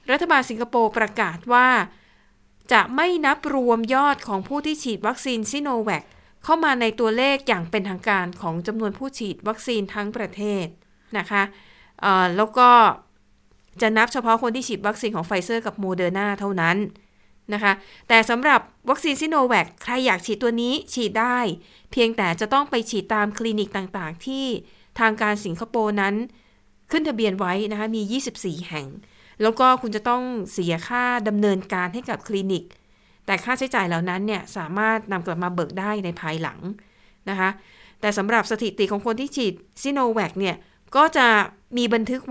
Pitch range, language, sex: 195-240 Hz, Thai, female